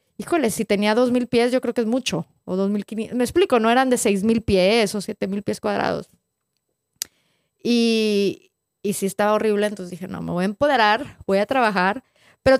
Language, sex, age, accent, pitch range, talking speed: Spanish, female, 20-39, Mexican, 220-275 Hz, 210 wpm